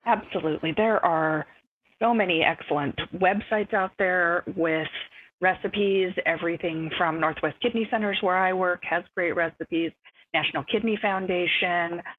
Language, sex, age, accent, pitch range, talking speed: English, female, 40-59, American, 160-210 Hz, 125 wpm